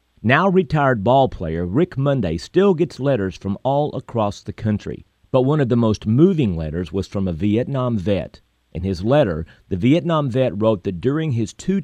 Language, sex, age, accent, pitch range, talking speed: English, male, 50-69, American, 85-130 Hz, 190 wpm